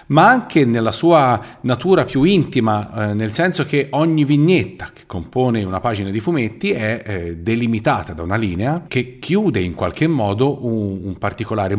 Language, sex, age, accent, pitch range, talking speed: Italian, male, 40-59, native, 95-125 Hz, 170 wpm